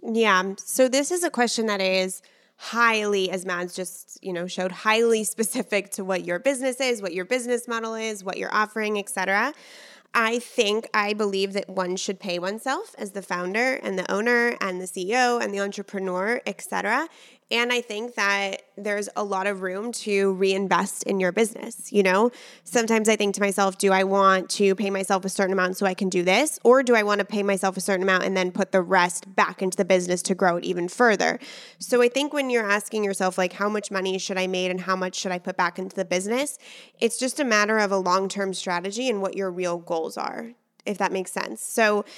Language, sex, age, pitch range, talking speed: English, female, 20-39, 190-225 Hz, 225 wpm